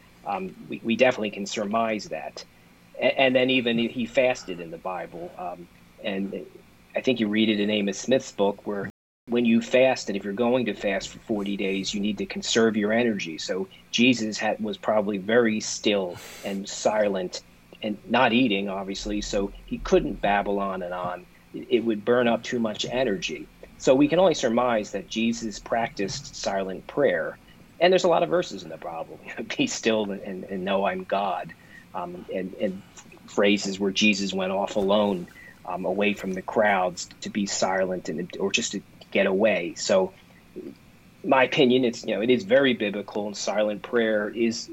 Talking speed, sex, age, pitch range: 180 wpm, male, 40-59, 100-120 Hz